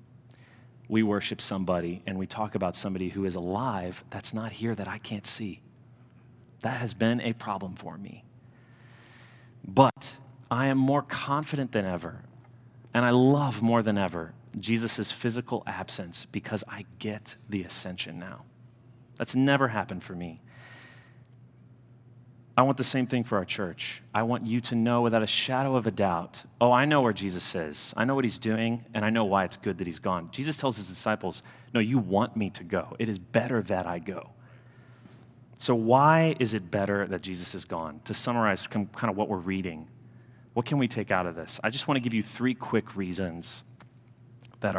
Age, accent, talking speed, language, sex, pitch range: 30-49, American, 190 wpm, English, male, 100-125 Hz